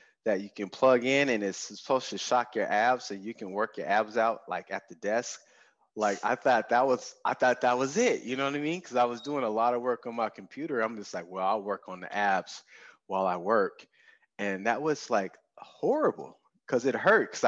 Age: 20-39